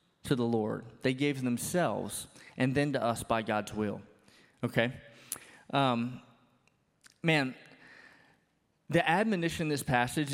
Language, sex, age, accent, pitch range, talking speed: English, male, 20-39, American, 130-170 Hz, 120 wpm